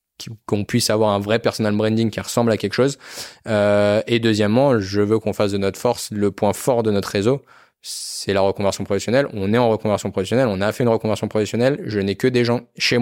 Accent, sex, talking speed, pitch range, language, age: French, male, 225 wpm, 100-120 Hz, French, 20-39